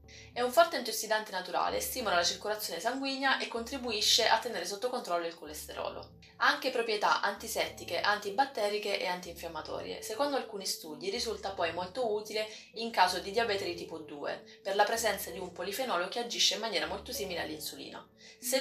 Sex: female